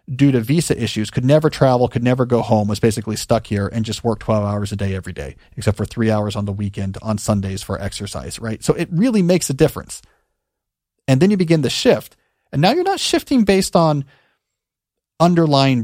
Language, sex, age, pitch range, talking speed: English, male, 40-59, 110-145 Hz, 210 wpm